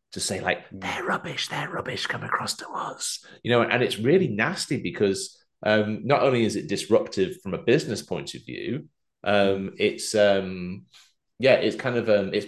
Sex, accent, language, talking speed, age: male, British, English, 190 wpm, 30-49